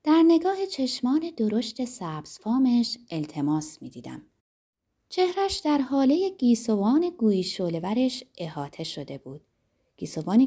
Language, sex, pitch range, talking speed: Persian, female, 160-265 Hz, 105 wpm